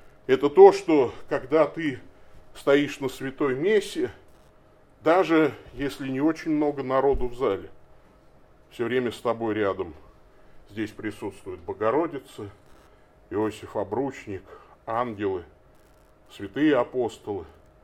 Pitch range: 105-150 Hz